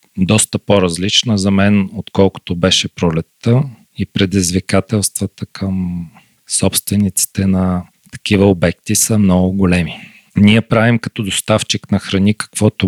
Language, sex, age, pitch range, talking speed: Bulgarian, male, 40-59, 95-115 Hz, 110 wpm